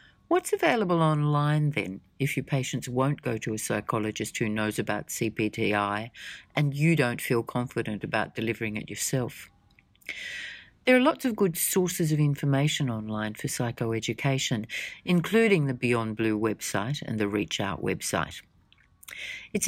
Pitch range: 110-150 Hz